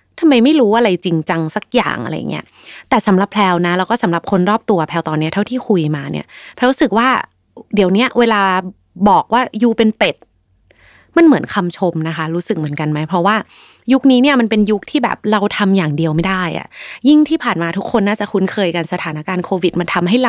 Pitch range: 175-235 Hz